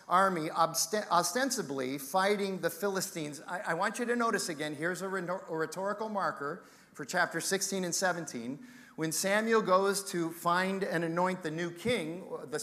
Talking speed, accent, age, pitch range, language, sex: 145 wpm, American, 40-59, 160-205 Hz, English, male